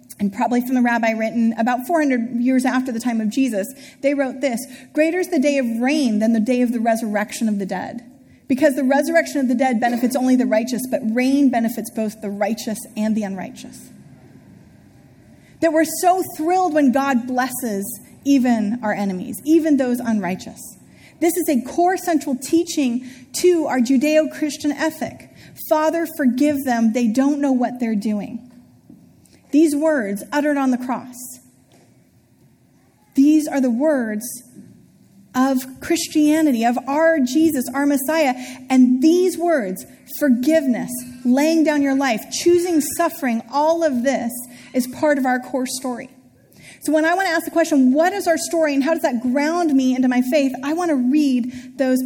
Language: English